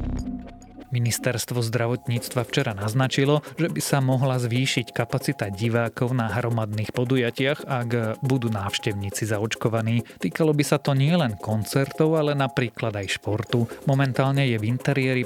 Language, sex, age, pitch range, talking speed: Slovak, male, 30-49, 110-135 Hz, 125 wpm